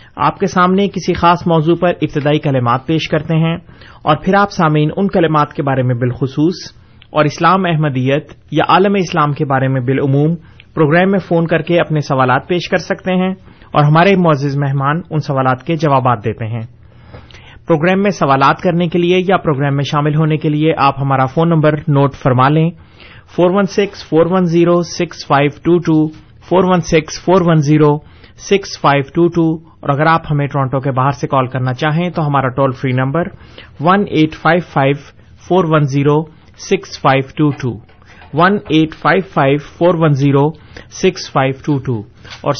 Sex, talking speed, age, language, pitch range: male, 130 wpm, 30-49, Urdu, 135-170 Hz